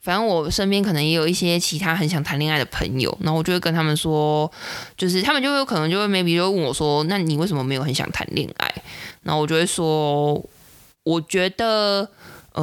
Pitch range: 145-180 Hz